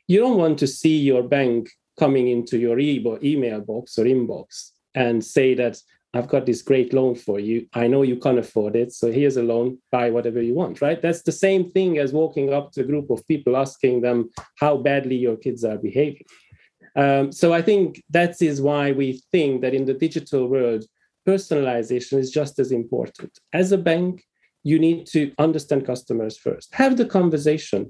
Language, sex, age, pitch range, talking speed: English, male, 30-49, 125-160 Hz, 195 wpm